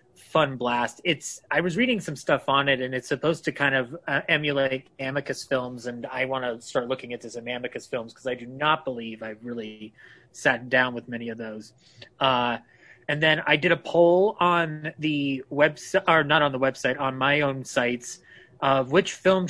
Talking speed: 205 wpm